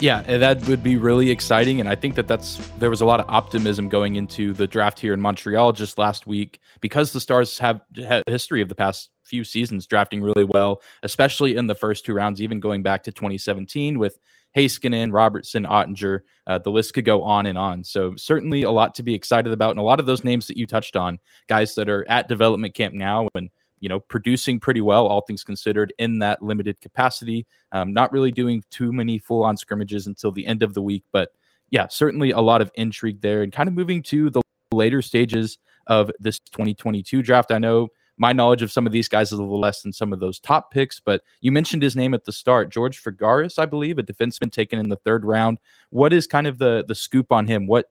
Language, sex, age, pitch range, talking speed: English, male, 20-39, 100-125 Hz, 230 wpm